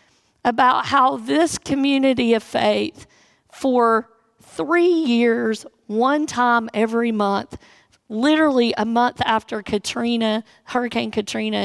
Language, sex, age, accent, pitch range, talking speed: English, female, 50-69, American, 220-270 Hz, 105 wpm